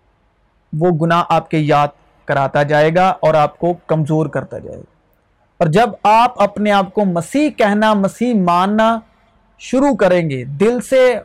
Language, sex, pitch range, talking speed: Urdu, male, 180-235 Hz, 160 wpm